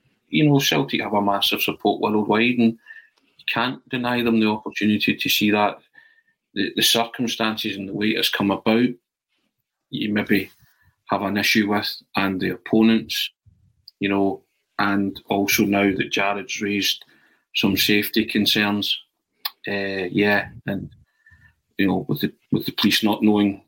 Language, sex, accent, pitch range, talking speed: English, male, British, 100-110 Hz, 150 wpm